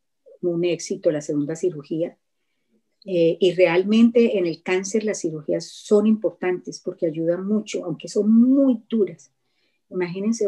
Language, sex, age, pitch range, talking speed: Spanish, female, 40-59, 175-210 Hz, 130 wpm